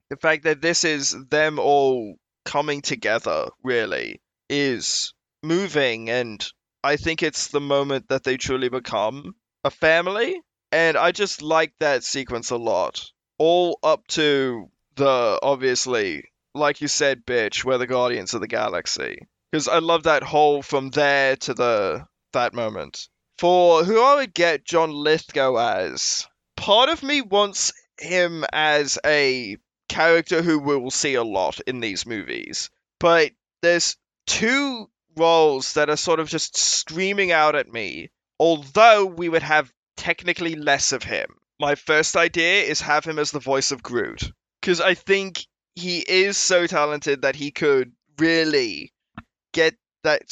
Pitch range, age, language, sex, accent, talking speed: 140-170 Hz, 20-39, English, male, Australian, 155 wpm